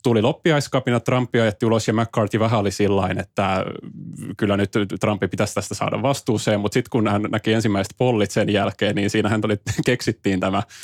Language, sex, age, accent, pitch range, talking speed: Finnish, male, 30-49, native, 100-115 Hz, 170 wpm